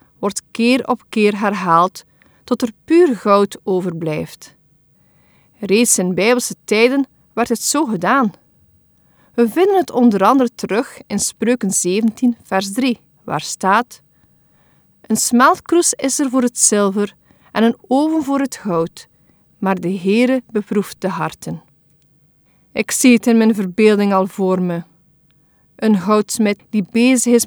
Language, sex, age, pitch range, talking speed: Dutch, female, 40-59, 190-250 Hz, 140 wpm